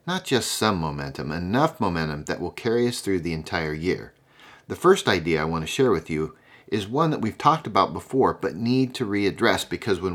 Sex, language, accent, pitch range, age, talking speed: male, English, American, 95-135 Hz, 40-59, 215 wpm